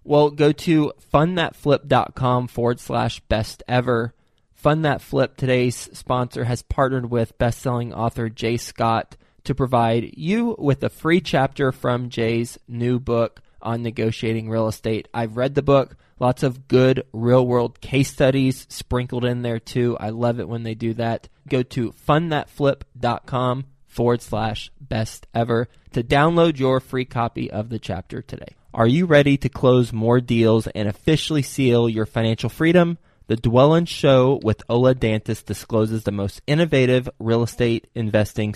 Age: 20-39